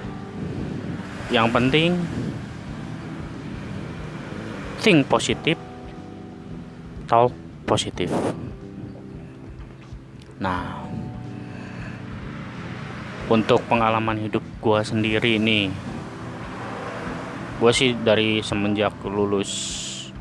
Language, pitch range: Indonesian, 100-120 Hz